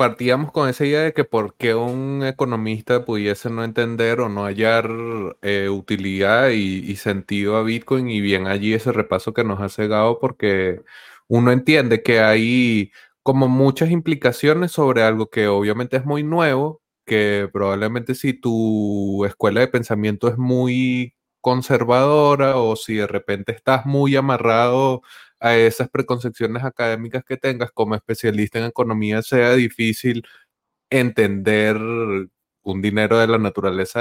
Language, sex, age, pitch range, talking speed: Spanish, male, 20-39, 105-125 Hz, 145 wpm